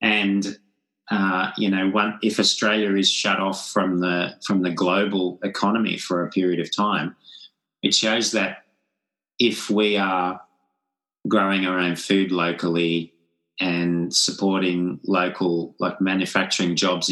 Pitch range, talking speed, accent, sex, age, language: 85-95 Hz, 135 wpm, Australian, male, 30-49, English